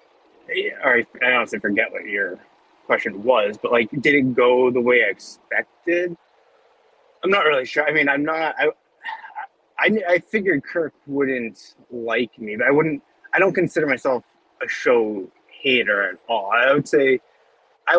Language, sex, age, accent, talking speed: English, male, 20-39, American, 165 wpm